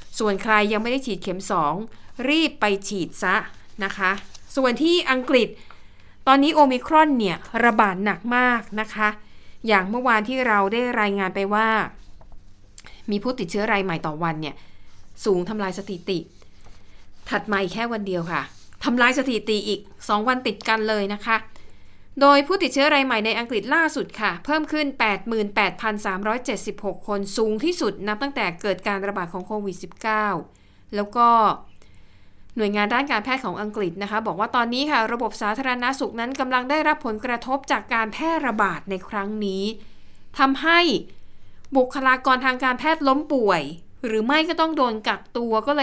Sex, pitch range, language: female, 195-255 Hz, Thai